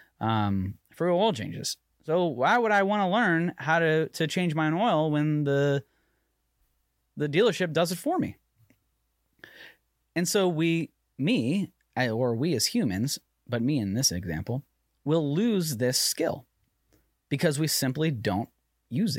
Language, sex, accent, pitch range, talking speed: English, male, American, 100-155 Hz, 150 wpm